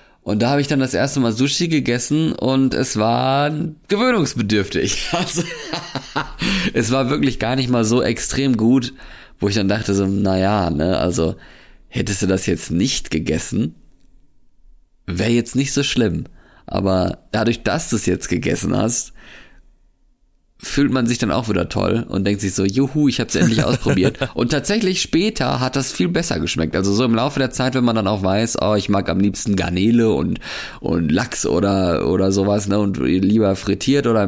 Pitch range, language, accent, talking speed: 100-130 Hz, German, German, 180 wpm